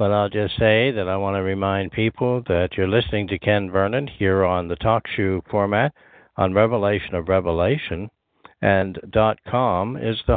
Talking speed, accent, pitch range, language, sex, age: 175 wpm, American, 90-115 Hz, English, male, 60-79